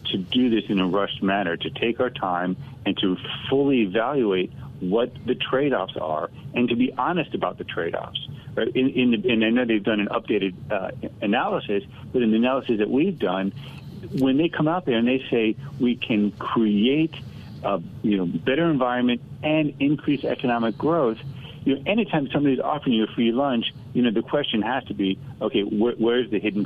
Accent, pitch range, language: American, 100-130 Hz, English